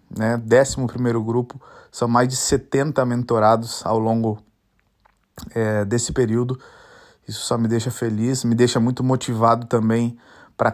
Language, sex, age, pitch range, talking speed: Portuguese, male, 20-39, 115-125 Hz, 135 wpm